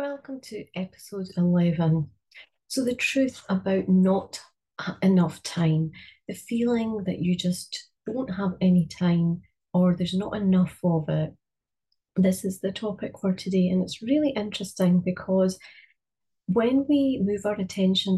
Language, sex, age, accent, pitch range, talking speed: English, female, 30-49, British, 180-225 Hz, 140 wpm